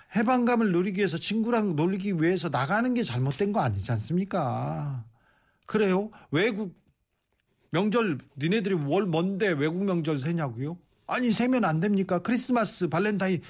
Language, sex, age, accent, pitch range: Korean, male, 40-59, native, 150-225 Hz